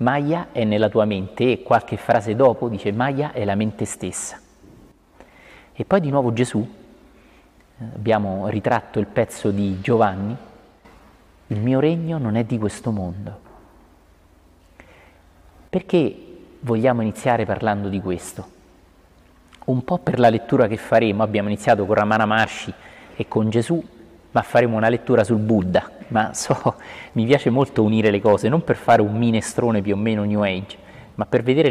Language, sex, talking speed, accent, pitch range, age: Italian, male, 155 wpm, native, 100-120 Hz, 30-49